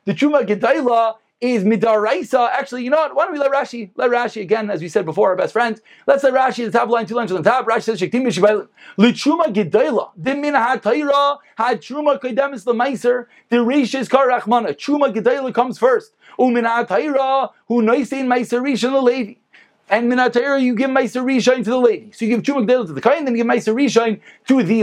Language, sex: English, male